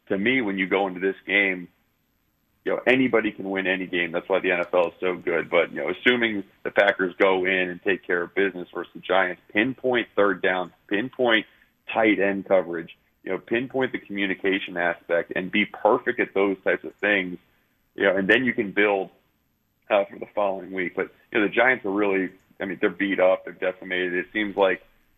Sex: male